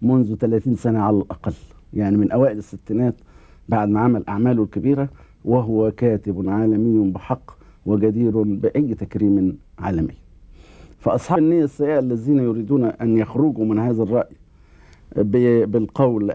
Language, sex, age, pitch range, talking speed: Arabic, male, 60-79, 100-135 Hz, 120 wpm